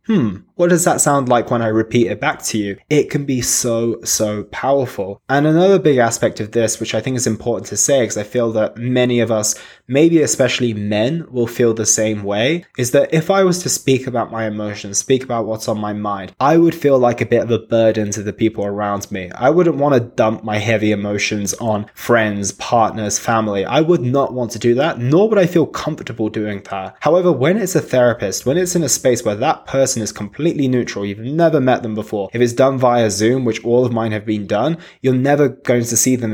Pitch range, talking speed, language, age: 110-135 Hz, 235 wpm, English, 20-39